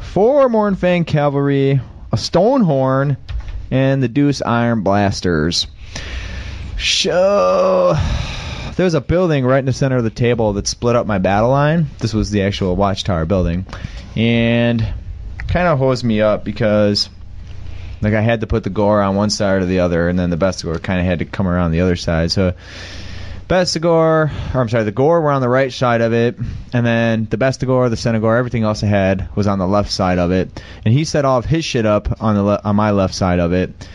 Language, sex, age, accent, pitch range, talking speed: English, male, 20-39, American, 95-130 Hz, 205 wpm